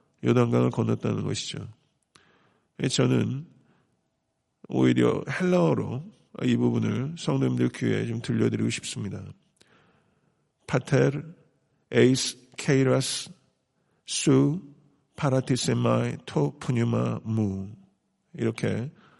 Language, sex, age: Korean, male, 50-69